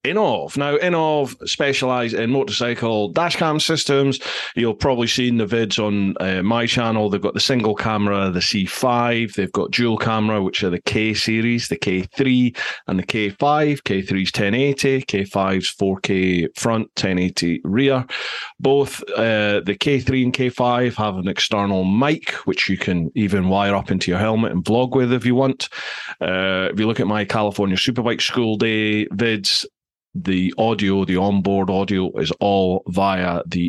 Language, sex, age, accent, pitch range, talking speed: English, male, 30-49, British, 100-130 Hz, 165 wpm